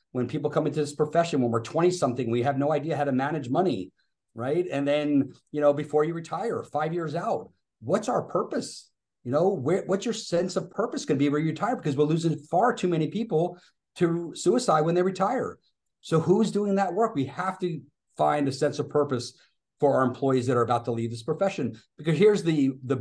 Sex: male